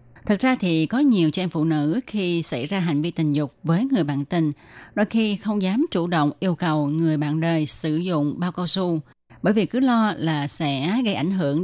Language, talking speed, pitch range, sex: Vietnamese, 230 wpm, 150-195 Hz, female